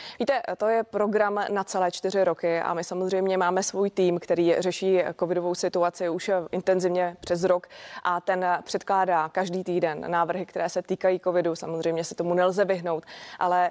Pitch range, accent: 175-205 Hz, native